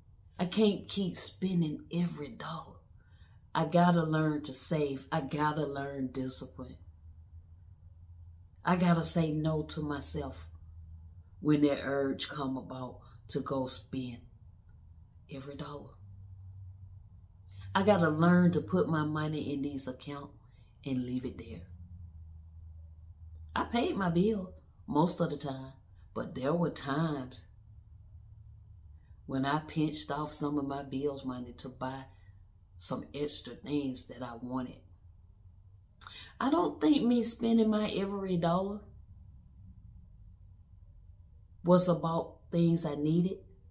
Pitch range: 95-150 Hz